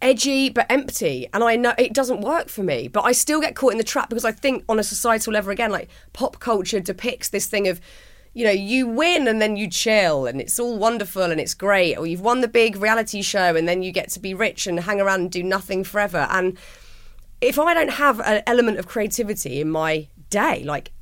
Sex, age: female, 30-49